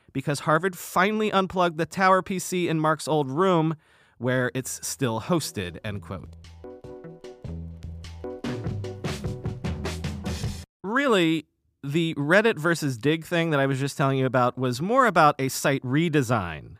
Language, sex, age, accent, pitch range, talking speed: English, male, 40-59, American, 130-180 Hz, 130 wpm